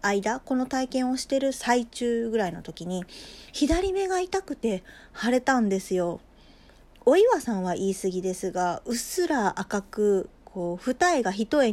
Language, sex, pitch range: Japanese, female, 180-255 Hz